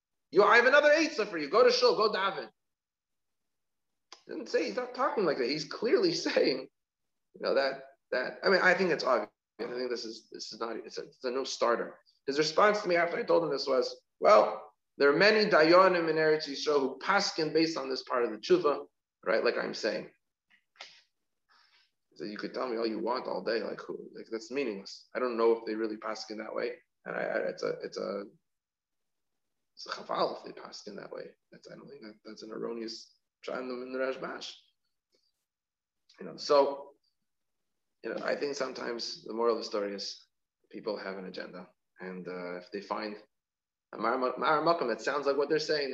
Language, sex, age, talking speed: English, male, 30-49, 205 wpm